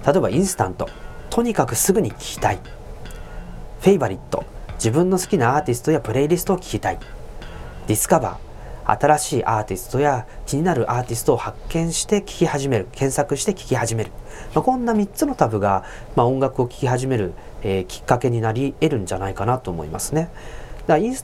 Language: Japanese